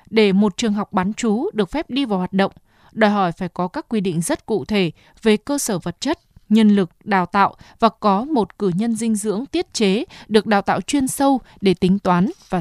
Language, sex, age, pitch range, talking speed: Vietnamese, female, 20-39, 190-230 Hz, 235 wpm